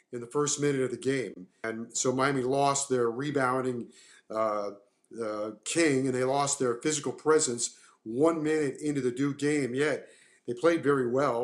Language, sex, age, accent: English, male, 40-59, American